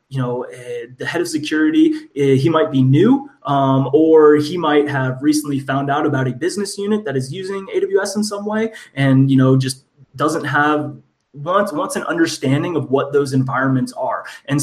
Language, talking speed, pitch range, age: English, 195 wpm, 135-180 Hz, 20-39